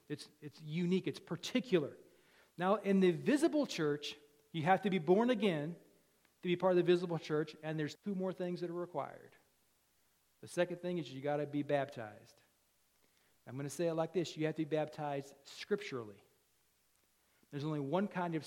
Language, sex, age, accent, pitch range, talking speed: English, male, 40-59, American, 145-185 Hz, 190 wpm